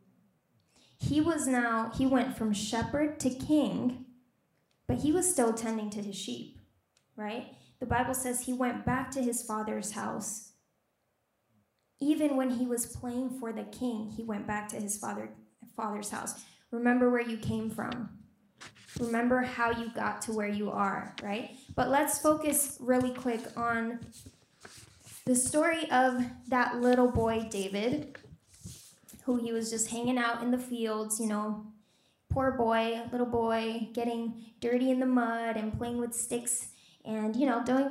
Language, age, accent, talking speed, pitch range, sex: English, 10-29, American, 155 wpm, 220-255 Hz, female